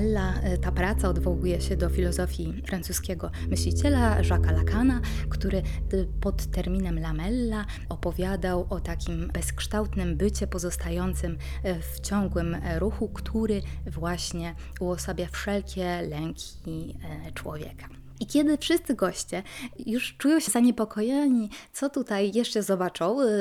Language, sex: Polish, female